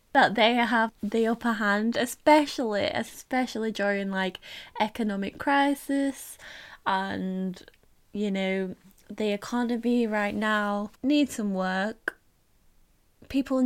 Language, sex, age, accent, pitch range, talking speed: English, female, 10-29, British, 205-270 Hz, 100 wpm